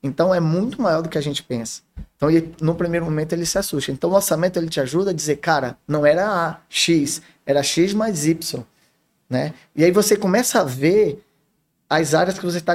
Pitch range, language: 145-185 Hz, Portuguese